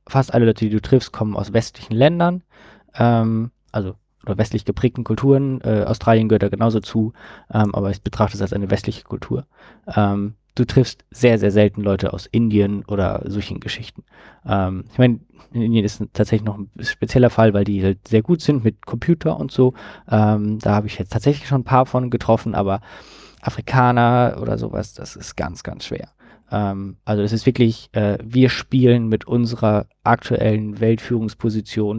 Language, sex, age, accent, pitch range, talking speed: German, male, 20-39, German, 105-120 Hz, 180 wpm